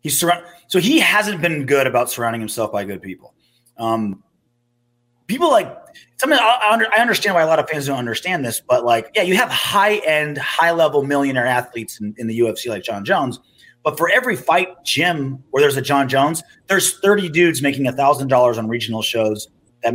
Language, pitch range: English, 120-180 Hz